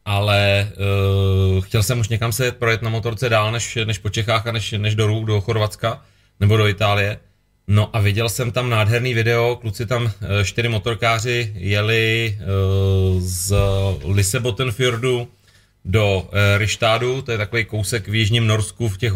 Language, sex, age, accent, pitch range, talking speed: Czech, male, 30-49, native, 100-110 Hz, 165 wpm